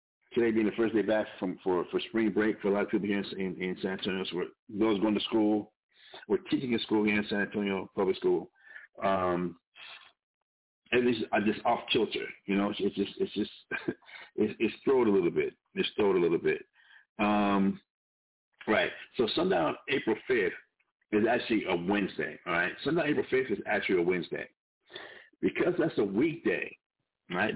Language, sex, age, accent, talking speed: English, male, 50-69, American, 195 wpm